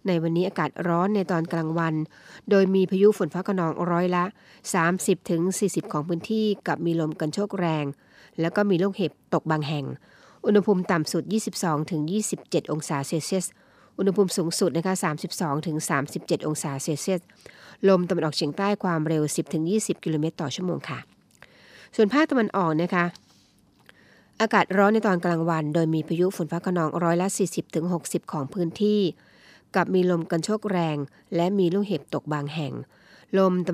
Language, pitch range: Thai, 160-190 Hz